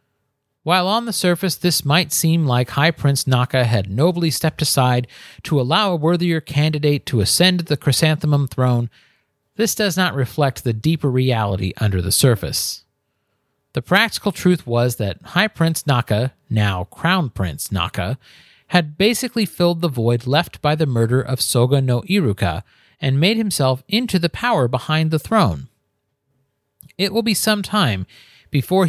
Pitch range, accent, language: 115-165 Hz, American, English